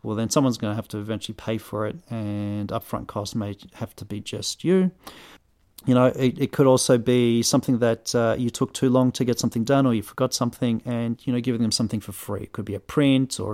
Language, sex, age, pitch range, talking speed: English, male, 40-59, 110-140 Hz, 250 wpm